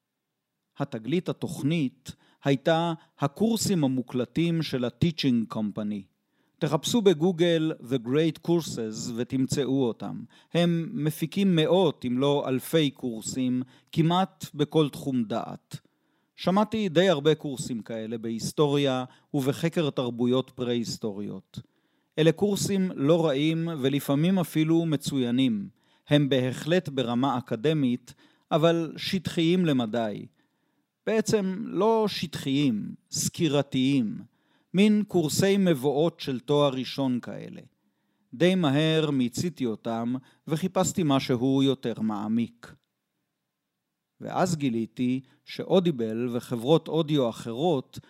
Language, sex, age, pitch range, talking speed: Hebrew, male, 40-59, 130-175 Hz, 90 wpm